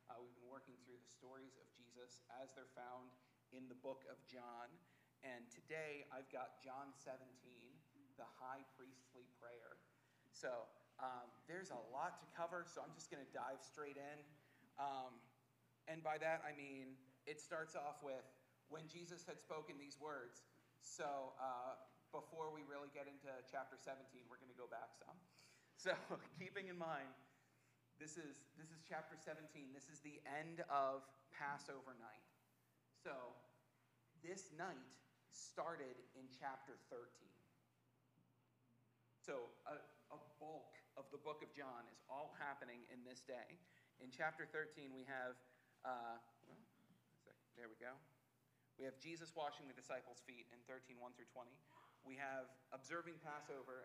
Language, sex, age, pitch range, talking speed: English, male, 30-49, 125-150 Hz, 150 wpm